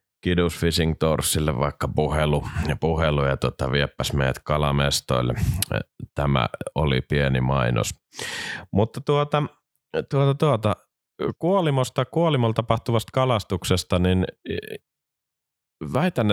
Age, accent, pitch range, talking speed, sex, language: 30-49, native, 75-90 Hz, 90 wpm, male, Finnish